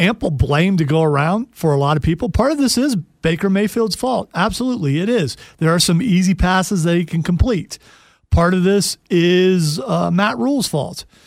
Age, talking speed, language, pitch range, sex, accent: 40-59, 195 wpm, English, 155-215 Hz, male, American